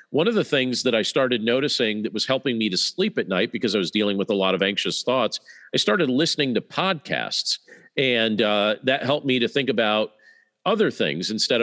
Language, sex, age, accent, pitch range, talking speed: English, male, 40-59, American, 110-145 Hz, 215 wpm